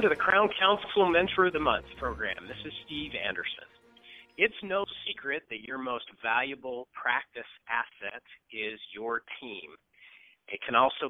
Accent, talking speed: American, 155 wpm